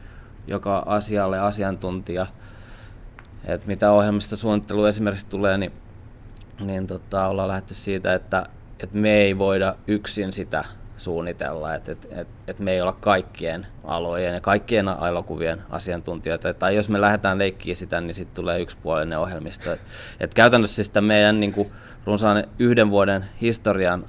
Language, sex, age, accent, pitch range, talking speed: Finnish, male, 20-39, native, 95-105 Hz, 145 wpm